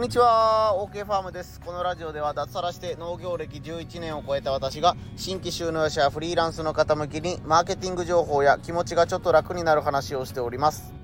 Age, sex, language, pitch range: 30-49, male, Japanese, 125-165 Hz